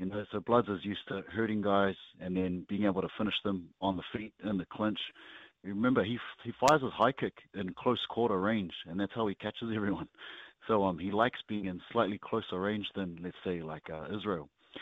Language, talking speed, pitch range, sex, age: English, 220 wpm, 90-100 Hz, male, 30-49